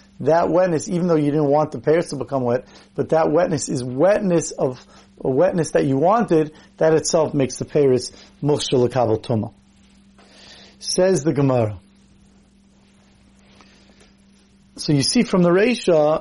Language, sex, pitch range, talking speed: English, male, 150-180 Hz, 135 wpm